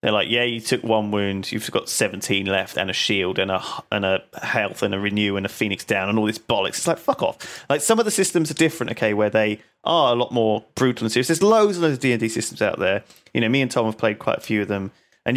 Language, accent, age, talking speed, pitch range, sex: English, British, 30-49, 285 wpm, 110-130 Hz, male